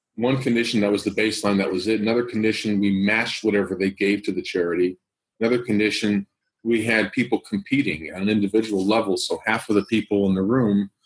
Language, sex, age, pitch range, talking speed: English, male, 40-59, 100-125 Hz, 200 wpm